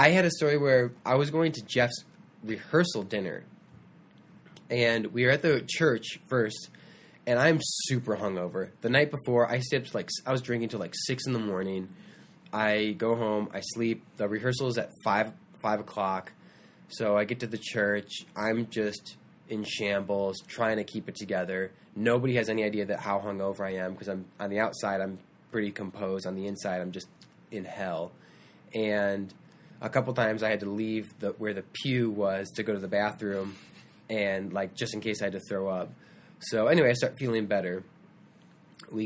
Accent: American